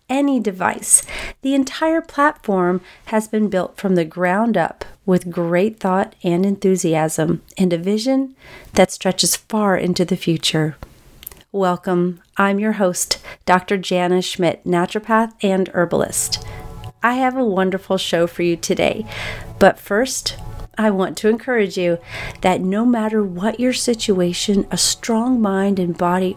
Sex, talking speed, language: female, 140 wpm, English